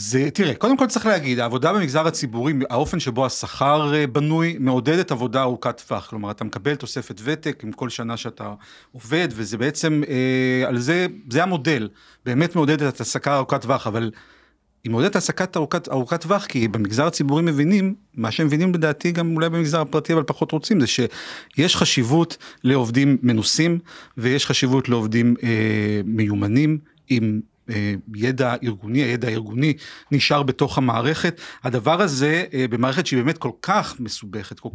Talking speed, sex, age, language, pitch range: 150 wpm, male, 40-59, Hebrew, 125-160 Hz